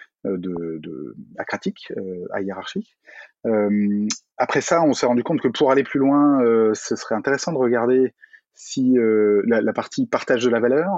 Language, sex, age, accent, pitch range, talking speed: French, male, 30-49, French, 100-125 Hz, 185 wpm